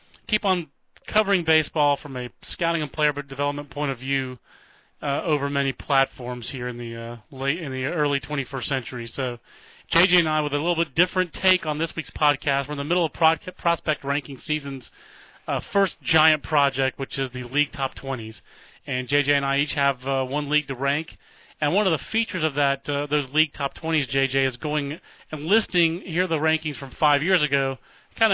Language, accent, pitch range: English, American, 135-170 Hz